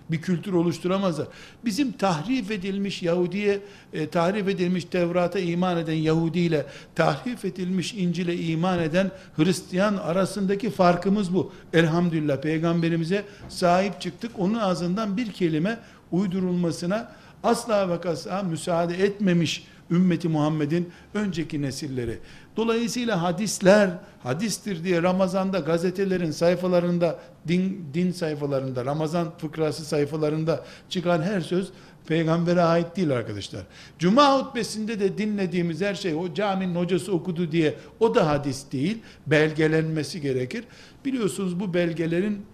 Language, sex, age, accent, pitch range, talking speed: Turkish, male, 60-79, native, 160-195 Hz, 115 wpm